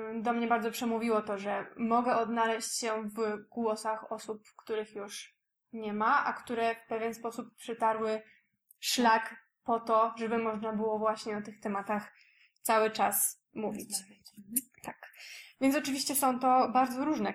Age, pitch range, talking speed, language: 20-39, 220-240 Hz, 145 wpm, Polish